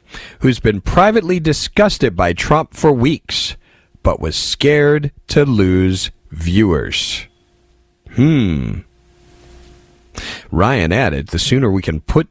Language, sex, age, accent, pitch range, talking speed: English, male, 40-59, American, 85-125 Hz, 105 wpm